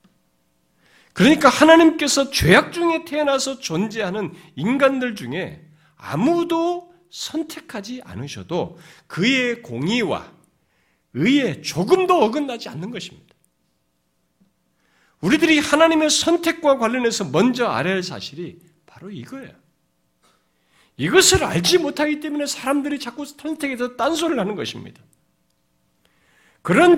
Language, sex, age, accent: Korean, male, 50-69, native